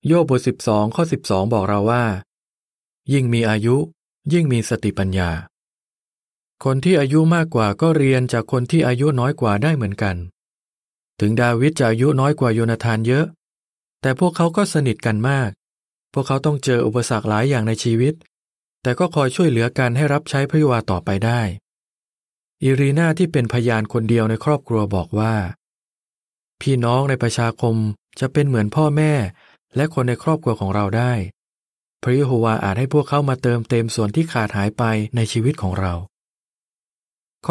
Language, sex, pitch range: Thai, male, 110-145 Hz